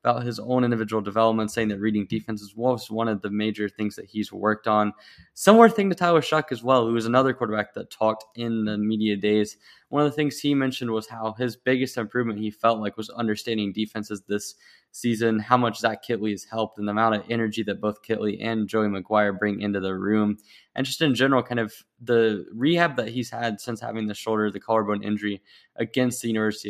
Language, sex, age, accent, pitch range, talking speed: English, male, 10-29, American, 105-120 Hz, 215 wpm